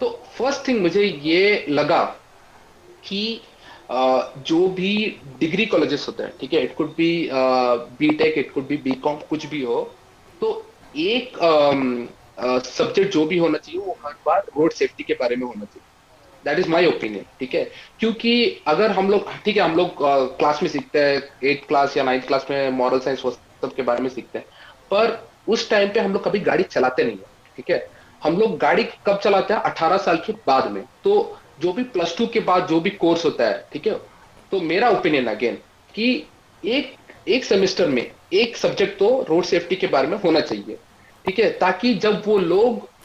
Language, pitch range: Hindi, 145-230 Hz